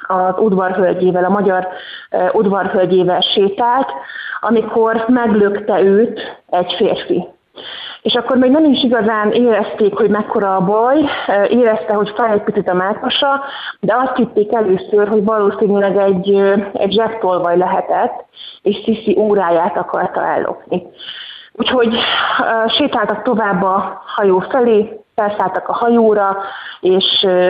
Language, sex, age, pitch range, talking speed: Hungarian, female, 30-49, 190-230 Hz, 125 wpm